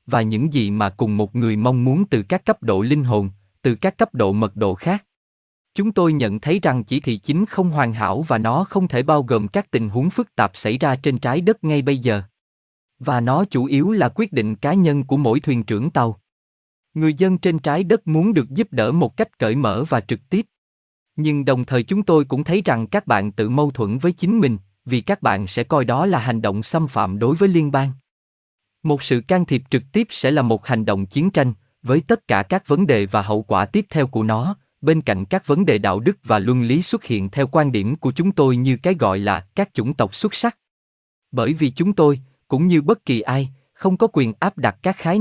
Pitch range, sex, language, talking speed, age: 110-170 Hz, male, Vietnamese, 240 wpm, 20-39